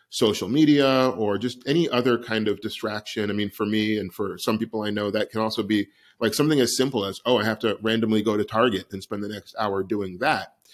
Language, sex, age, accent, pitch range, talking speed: English, male, 30-49, American, 105-120 Hz, 240 wpm